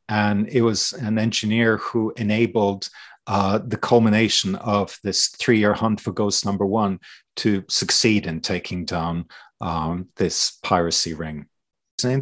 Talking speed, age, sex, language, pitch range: 140 wpm, 40-59, male, English, 105-125 Hz